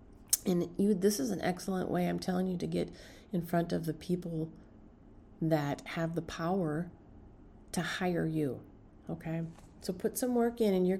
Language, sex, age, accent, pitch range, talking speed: English, female, 40-59, American, 160-205 Hz, 175 wpm